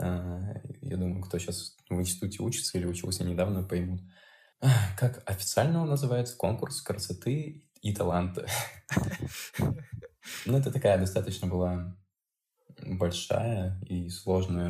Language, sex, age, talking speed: Russian, male, 20-39, 120 wpm